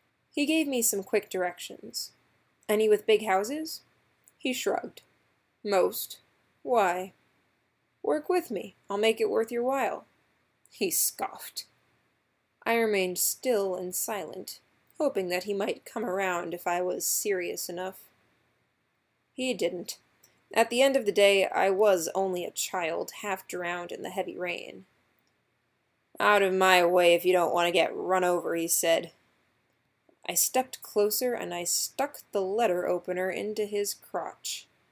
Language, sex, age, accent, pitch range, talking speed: English, female, 20-39, American, 175-220 Hz, 150 wpm